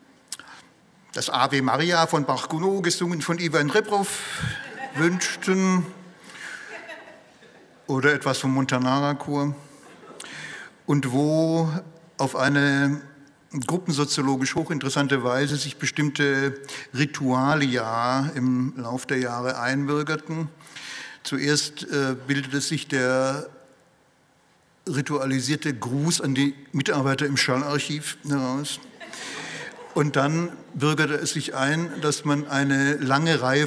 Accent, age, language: German, 60-79, German